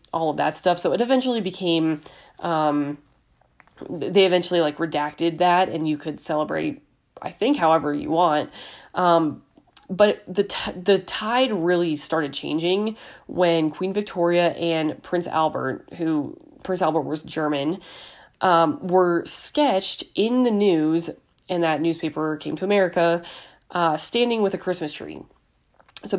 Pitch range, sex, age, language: 155-185 Hz, female, 20-39, English